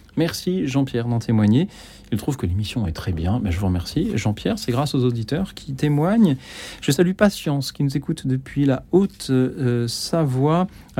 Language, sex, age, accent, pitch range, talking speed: French, male, 40-59, French, 120-160 Hz, 180 wpm